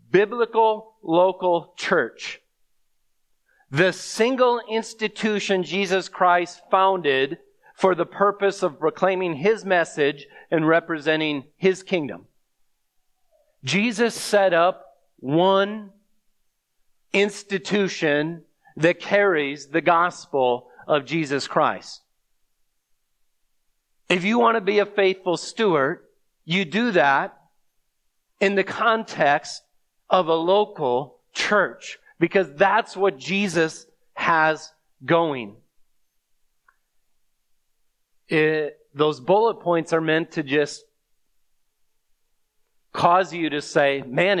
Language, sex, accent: English, male, American